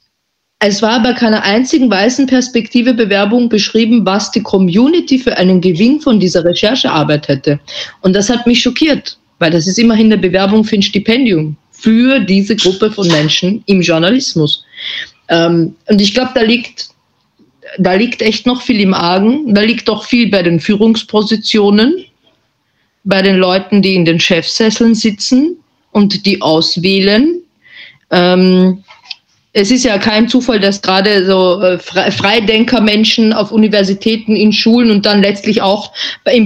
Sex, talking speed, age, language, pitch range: female, 150 wpm, 50-69, German, 190-230 Hz